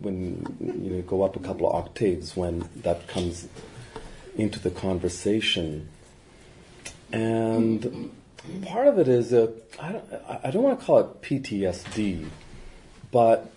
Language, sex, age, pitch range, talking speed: English, male, 40-59, 100-130 Hz, 130 wpm